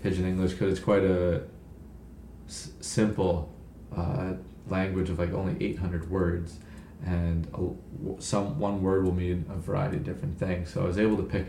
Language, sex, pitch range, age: English, male, 85-100 Hz, 30-49